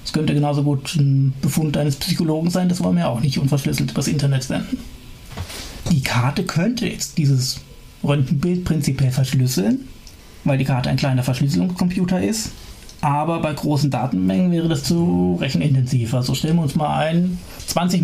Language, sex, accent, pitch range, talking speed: German, male, German, 130-180 Hz, 160 wpm